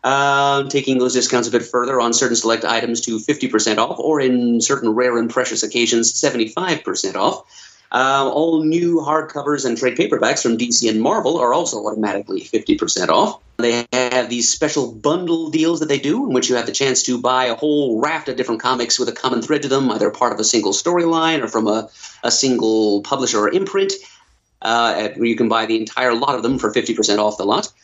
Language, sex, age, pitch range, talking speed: English, male, 30-49, 110-150 Hz, 205 wpm